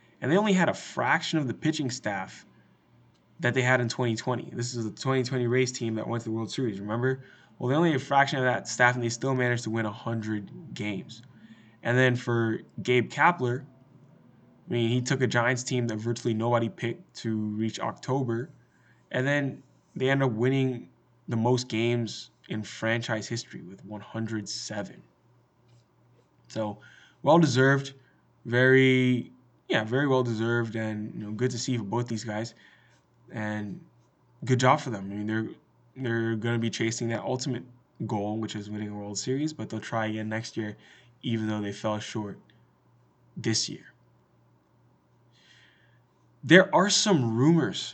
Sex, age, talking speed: male, 20-39, 165 wpm